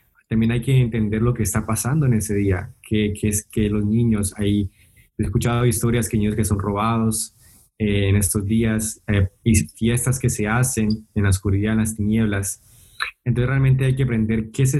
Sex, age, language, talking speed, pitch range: male, 20-39, Spanish, 200 wpm, 105-120 Hz